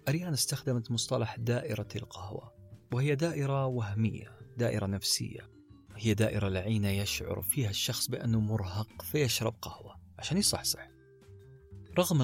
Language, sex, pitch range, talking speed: Arabic, male, 100-125 Hz, 115 wpm